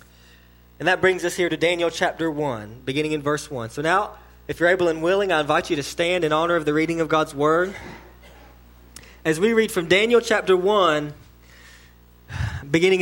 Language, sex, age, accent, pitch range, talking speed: English, male, 20-39, American, 125-210 Hz, 190 wpm